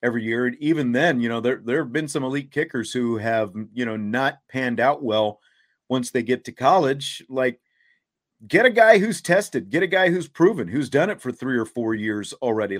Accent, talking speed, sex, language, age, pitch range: American, 220 wpm, male, English, 40-59, 120-150 Hz